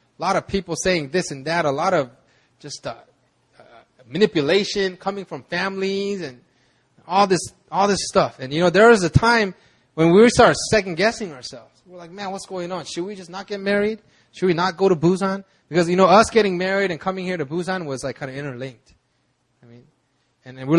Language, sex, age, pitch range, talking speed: English, male, 20-39, 140-190 Hz, 215 wpm